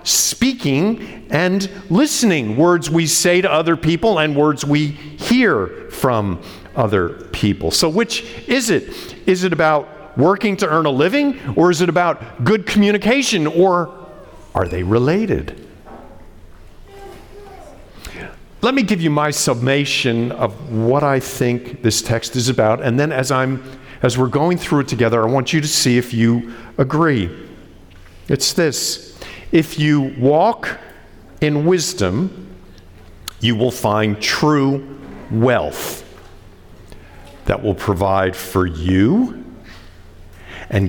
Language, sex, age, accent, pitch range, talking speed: English, male, 50-69, American, 105-165 Hz, 130 wpm